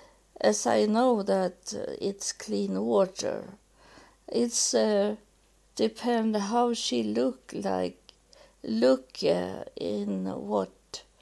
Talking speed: 95 wpm